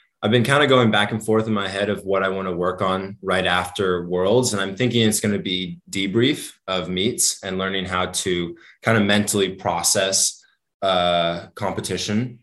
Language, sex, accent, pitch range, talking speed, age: English, male, American, 90-105 Hz, 200 wpm, 20-39